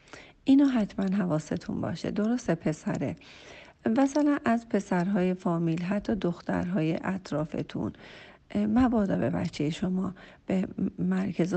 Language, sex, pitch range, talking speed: Persian, female, 170-215 Hz, 100 wpm